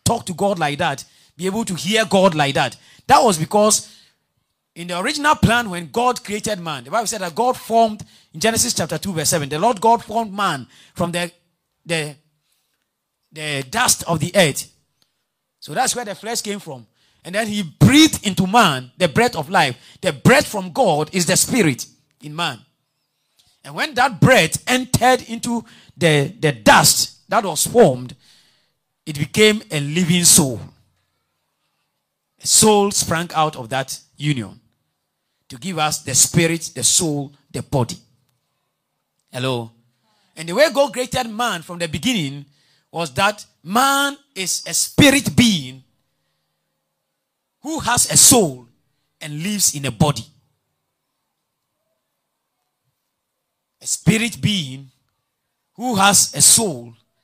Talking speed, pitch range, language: 145 wpm, 140-210 Hz, English